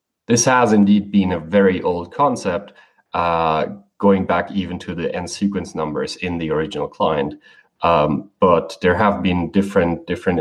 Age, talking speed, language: 30-49, 160 wpm, English